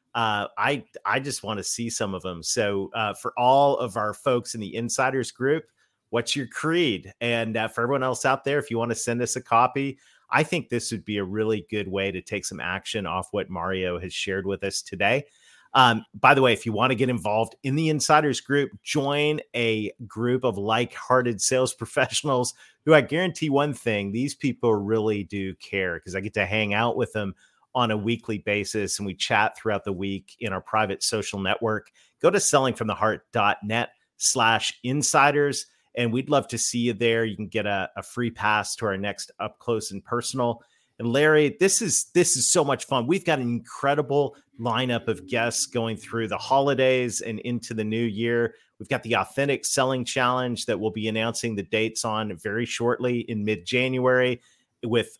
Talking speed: 200 wpm